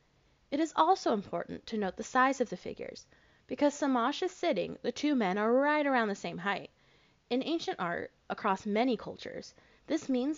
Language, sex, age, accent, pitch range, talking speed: English, female, 10-29, American, 200-275 Hz, 185 wpm